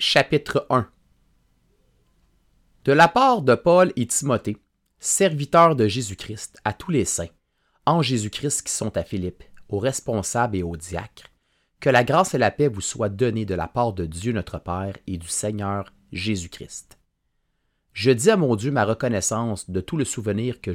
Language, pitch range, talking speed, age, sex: French, 95-125 Hz, 170 wpm, 30-49, male